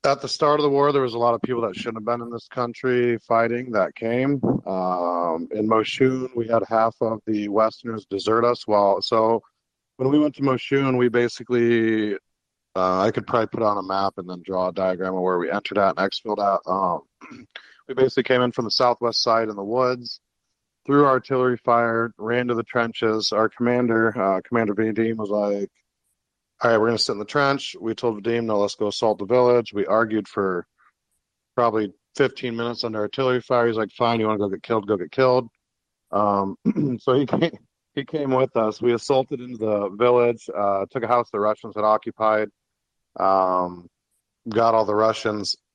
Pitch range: 105-125 Hz